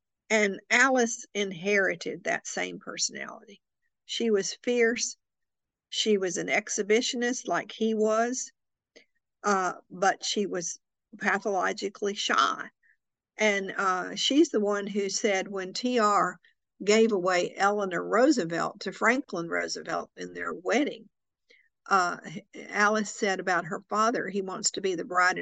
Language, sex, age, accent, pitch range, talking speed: English, female, 50-69, American, 200-240 Hz, 125 wpm